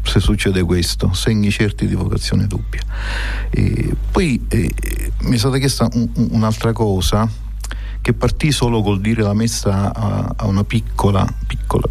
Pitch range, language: 100-115 Hz, Italian